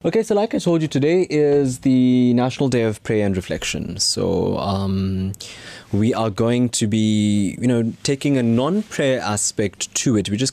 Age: 20-39